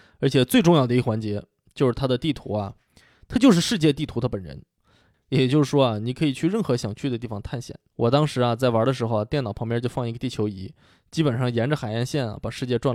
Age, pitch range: 20-39, 115-155 Hz